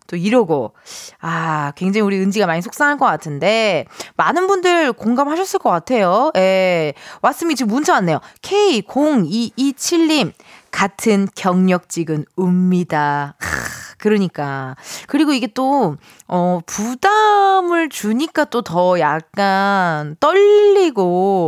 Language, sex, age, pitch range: Korean, female, 20-39, 180-280 Hz